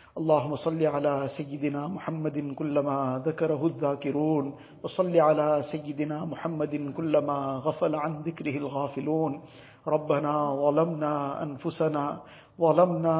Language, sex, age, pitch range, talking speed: English, male, 50-69, 155-180 Hz, 95 wpm